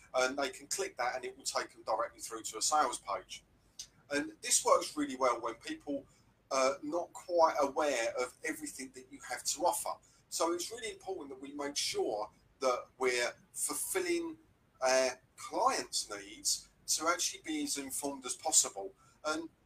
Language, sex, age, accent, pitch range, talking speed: English, male, 40-59, British, 130-210 Hz, 170 wpm